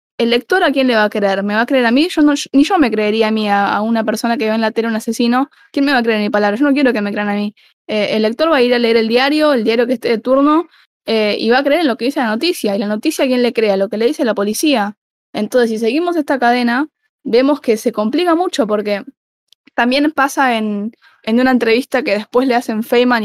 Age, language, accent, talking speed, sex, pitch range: 10-29, Spanish, Argentinian, 290 wpm, female, 210-265 Hz